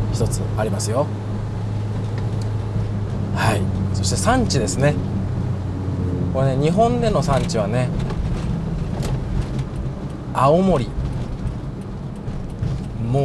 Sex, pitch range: male, 100-140 Hz